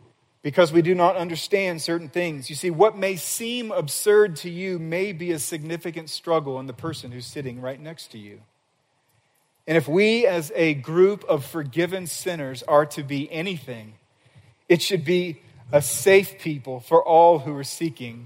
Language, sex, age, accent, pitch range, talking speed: English, male, 40-59, American, 145-180 Hz, 175 wpm